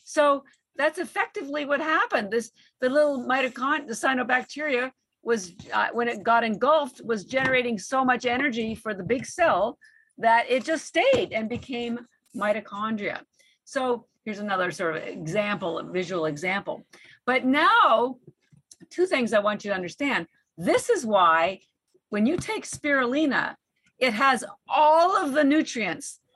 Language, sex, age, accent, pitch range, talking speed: English, female, 50-69, American, 210-275 Hz, 145 wpm